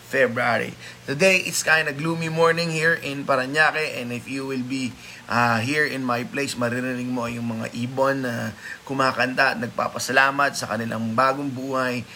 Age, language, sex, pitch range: 20-39, Filipino, male, 120-140 Hz